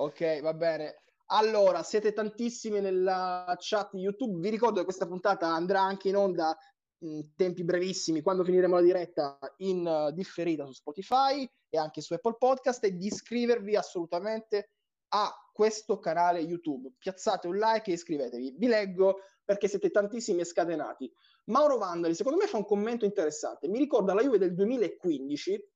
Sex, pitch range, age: male, 180-235 Hz, 20-39